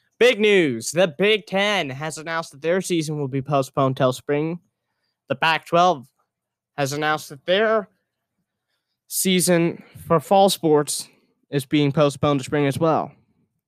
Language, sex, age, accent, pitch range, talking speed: English, male, 20-39, American, 140-180 Hz, 140 wpm